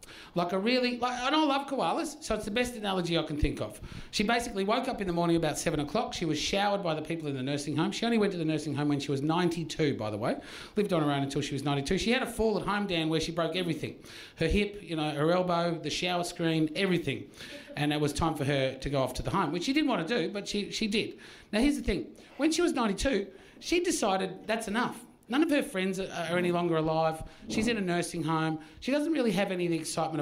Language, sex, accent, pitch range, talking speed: English, male, Australian, 160-215 Hz, 270 wpm